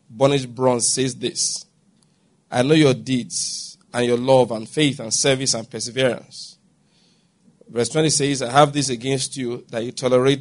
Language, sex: English, male